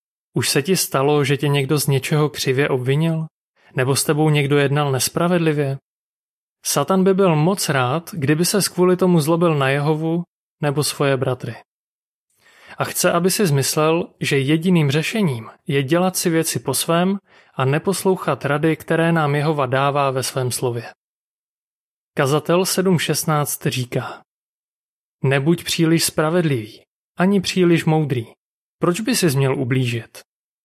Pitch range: 135-170 Hz